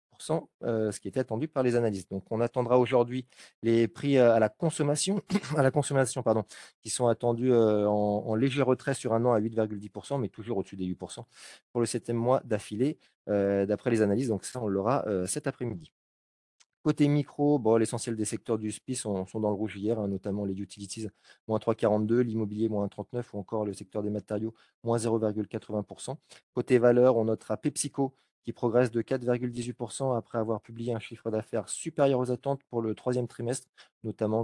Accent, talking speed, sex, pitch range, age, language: French, 190 wpm, male, 105-130 Hz, 30-49, French